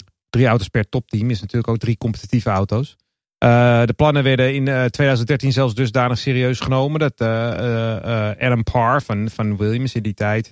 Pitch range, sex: 115-140 Hz, male